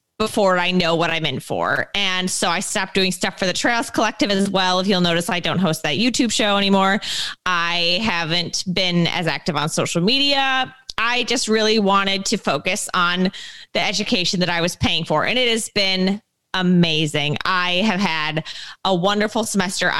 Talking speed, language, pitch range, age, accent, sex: 185 wpm, English, 175-220 Hz, 20-39, American, female